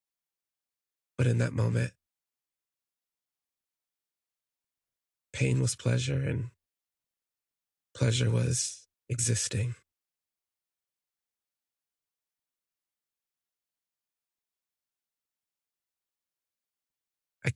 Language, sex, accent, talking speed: English, male, American, 40 wpm